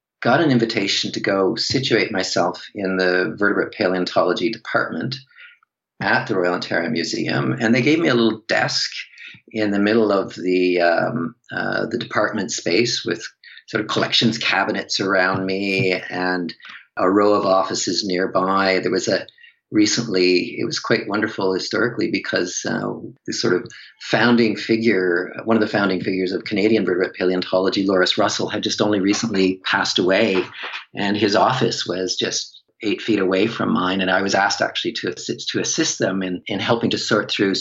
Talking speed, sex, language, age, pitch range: 170 wpm, male, English, 40-59, 95-115 Hz